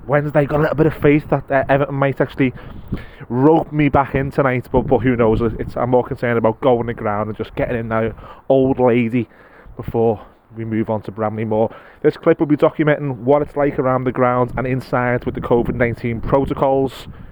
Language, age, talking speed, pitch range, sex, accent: English, 20-39, 210 wpm, 125-165 Hz, male, British